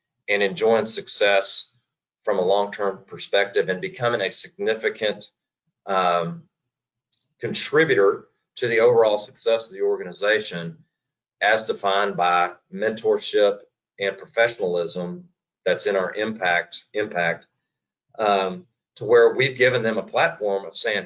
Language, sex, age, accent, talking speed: English, male, 40-59, American, 115 wpm